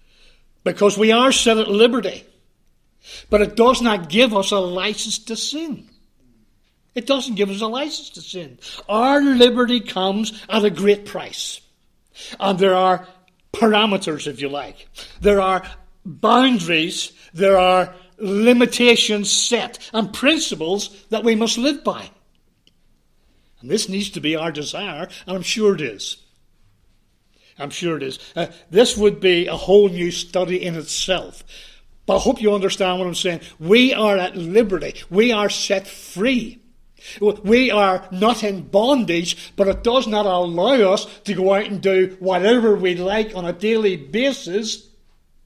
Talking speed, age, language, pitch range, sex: 155 wpm, 60-79, English, 175-220 Hz, male